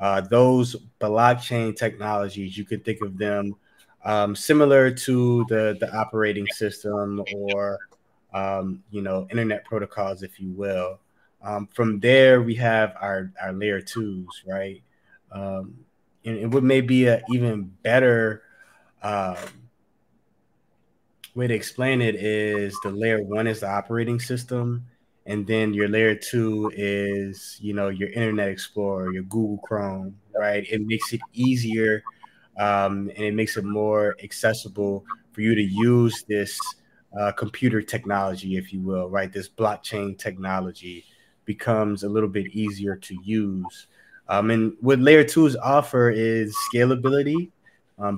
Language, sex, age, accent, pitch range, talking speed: English, male, 20-39, American, 100-120 Hz, 140 wpm